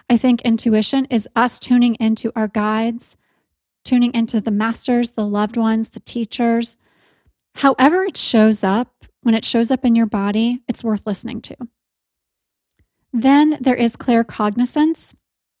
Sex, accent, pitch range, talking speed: female, American, 220-250 Hz, 140 wpm